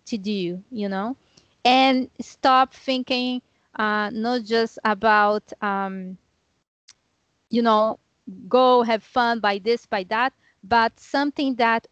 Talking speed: 120 wpm